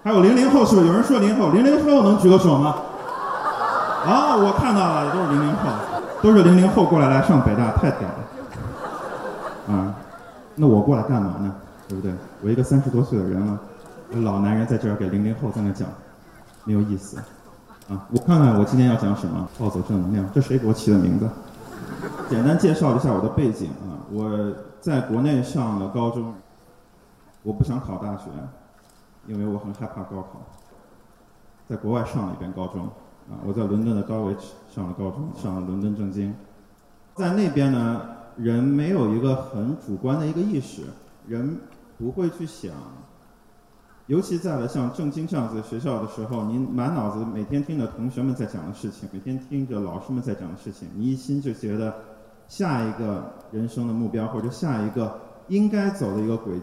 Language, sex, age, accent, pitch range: Chinese, male, 20-39, native, 100-140 Hz